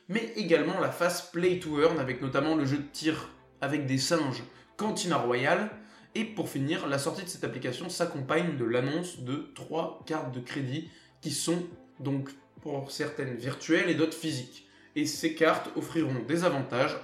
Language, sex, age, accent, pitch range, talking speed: French, male, 20-39, French, 135-170 Hz, 175 wpm